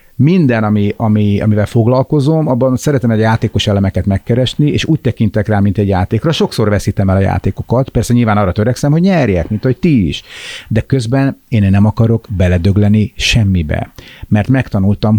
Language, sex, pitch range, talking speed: English, male, 100-125 Hz, 165 wpm